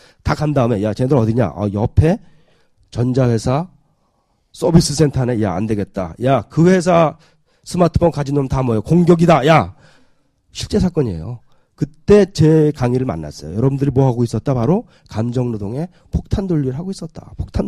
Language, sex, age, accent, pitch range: Korean, male, 30-49, native, 120-160 Hz